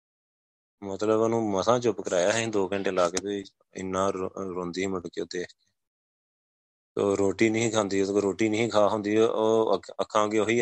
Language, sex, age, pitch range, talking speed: Punjabi, male, 20-39, 95-120 Hz, 170 wpm